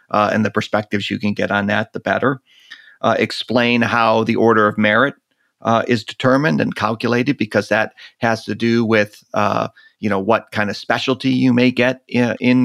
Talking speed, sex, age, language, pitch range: 195 wpm, male, 40-59, English, 110-130 Hz